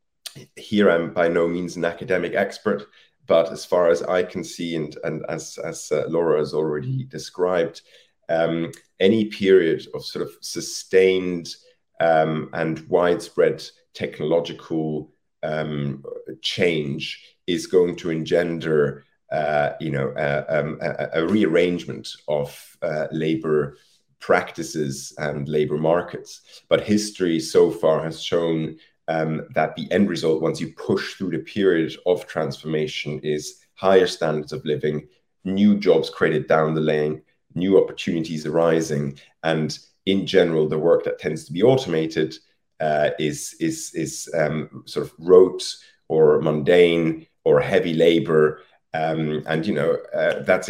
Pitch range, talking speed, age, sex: 75-90 Hz, 135 wpm, 30-49, male